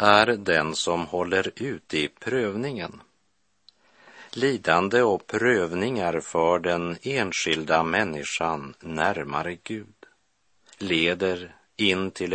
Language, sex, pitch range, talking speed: Swedish, male, 80-105 Hz, 90 wpm